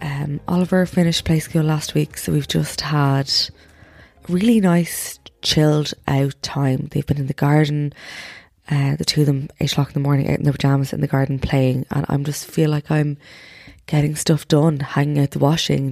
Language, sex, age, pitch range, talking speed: English, female, 20-39, 135-155 Hz, 195 wpm